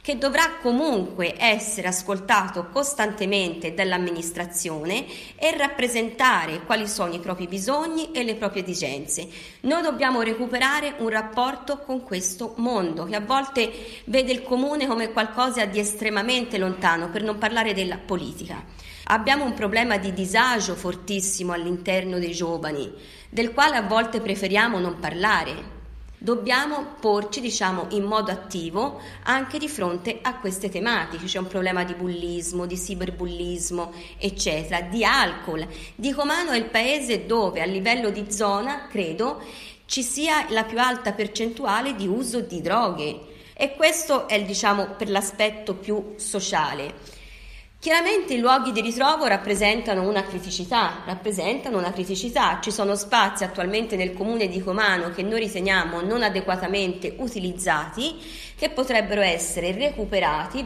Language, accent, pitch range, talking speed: Italian, native, 185-245 Hz, 135 wpm